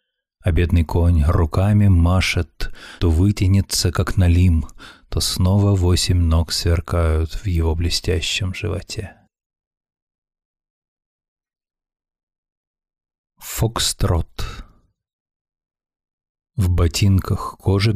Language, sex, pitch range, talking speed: Russian, male, 85-100 Hz, 75 wpm